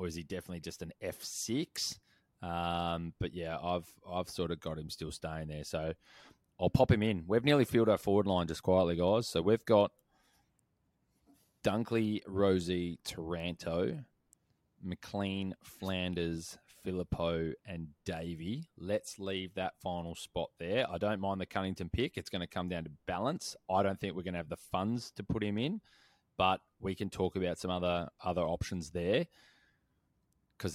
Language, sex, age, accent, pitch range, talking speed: English, male, 20-39, Australian, 85-100 Hz, 170 wpm